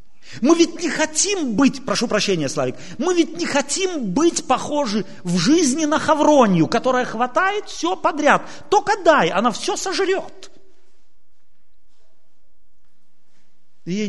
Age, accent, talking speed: 40-59, native, 120 wpm